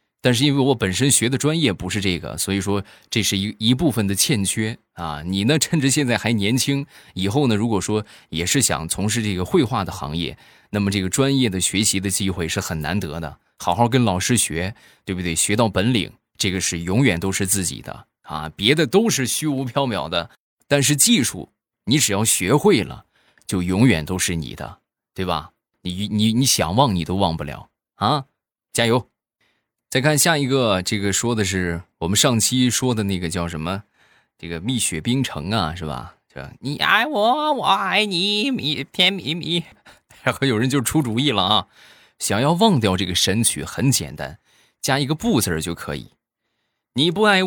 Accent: native